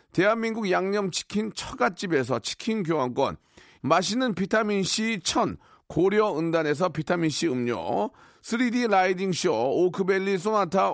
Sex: male